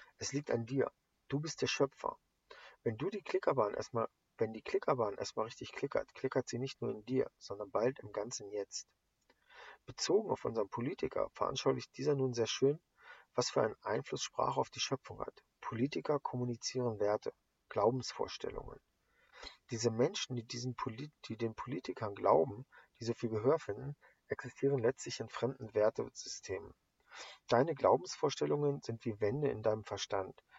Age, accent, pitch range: 40-59, German, 115-140 Hz